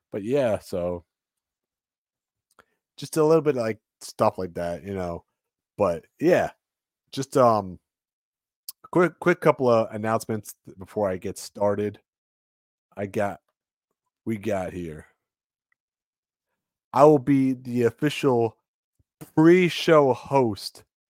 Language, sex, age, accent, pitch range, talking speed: English, male, 30-49, American, 105-135 Hz, 115 wpm